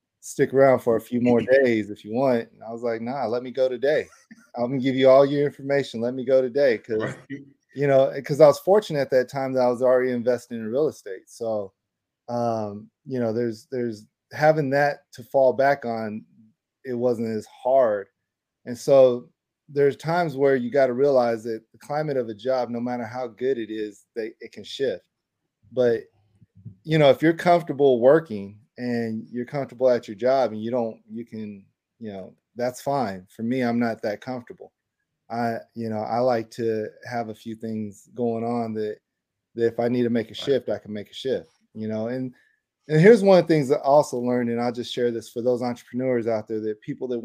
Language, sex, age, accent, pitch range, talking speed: English, male, 20-39, American, 115-135 Hz, 215 wpm